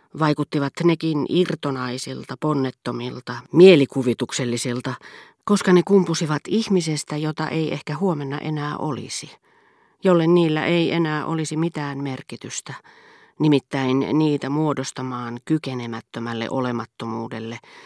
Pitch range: 125-170 Hz